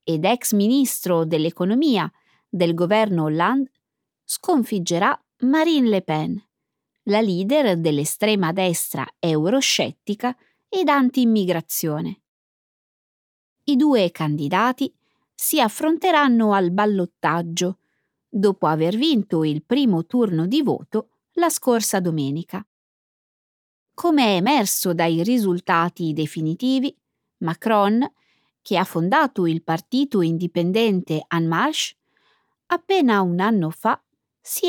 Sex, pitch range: female, 170-260 Hz